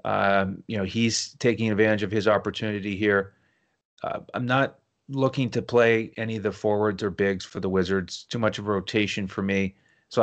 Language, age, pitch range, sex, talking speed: English, 30-49, 105-130 Hz, male, 195 wpm